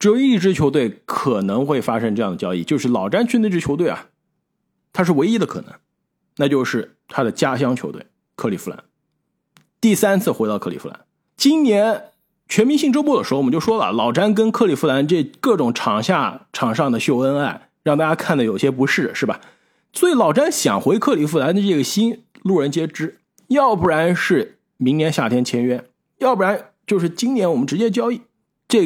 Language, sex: Chinese, male